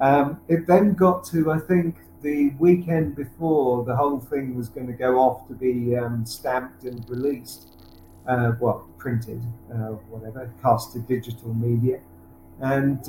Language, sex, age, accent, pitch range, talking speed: English, male, 50-69, British, 120-140 Hz, 155 wpm